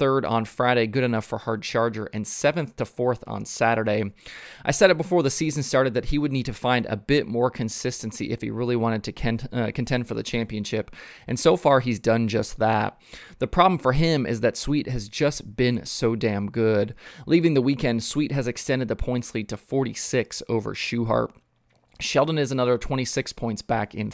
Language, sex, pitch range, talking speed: English, male, 110-135 Hz, 200 wpm